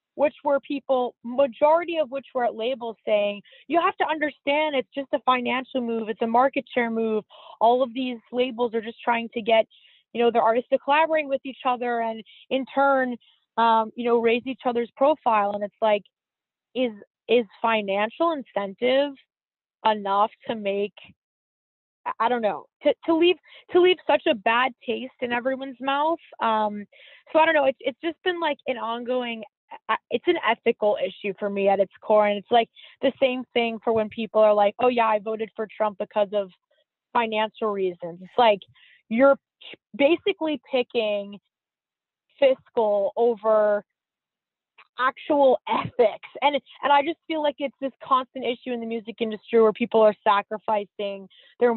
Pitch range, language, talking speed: 220-275 Hz, English, 170 wpm